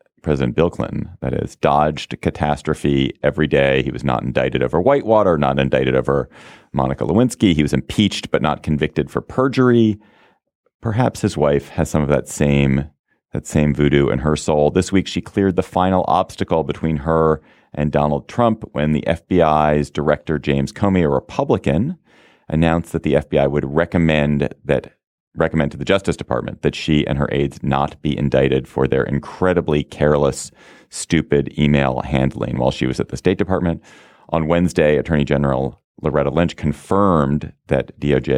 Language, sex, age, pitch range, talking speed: English, male, 30-49, 70-85 Hz, 165 wpm